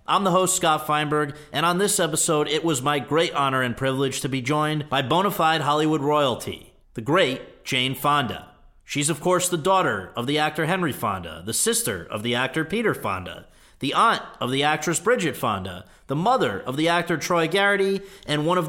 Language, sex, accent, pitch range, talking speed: English, male, American, 130-175 Hz, 200 wpm